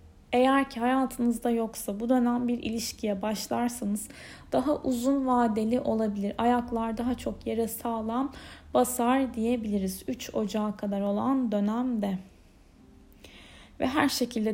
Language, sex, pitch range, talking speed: Turkish, female, 210-250 Hz, 115 wpm